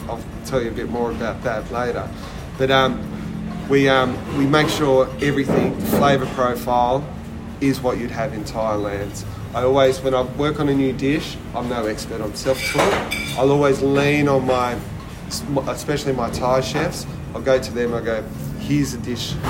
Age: 30-49